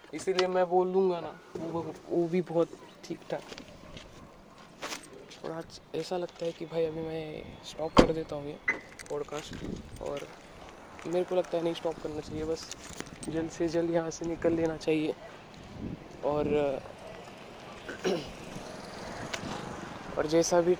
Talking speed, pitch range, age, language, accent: 90 wpm, 155-170 Hz, 20-39, Marathi, native